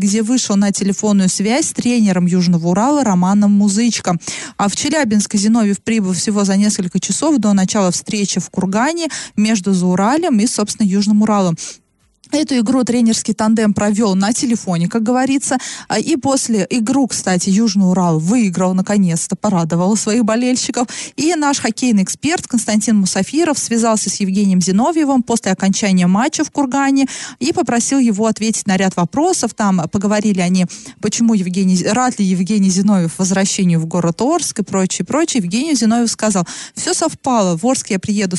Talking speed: 155 wpm